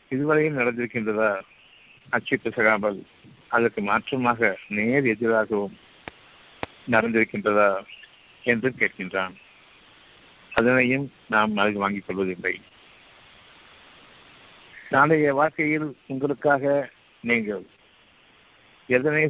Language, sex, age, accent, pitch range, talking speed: Tamil, male, 60-79, native, 105-135 Hz, 65 wpm